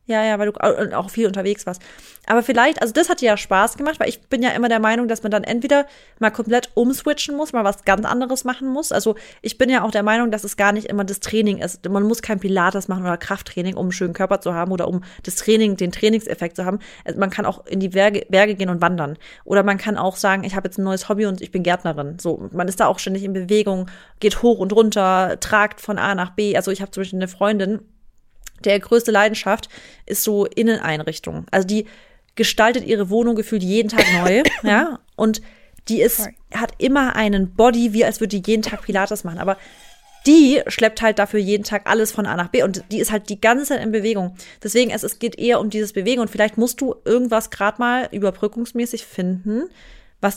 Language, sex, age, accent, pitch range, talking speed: German, female, 30-49, German, 195-230 Hz, 230 wpm